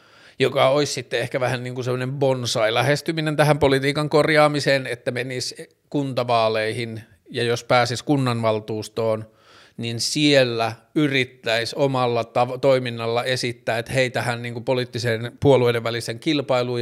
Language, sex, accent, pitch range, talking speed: Finnish, male, native, 115-135 Hz, 120 wpm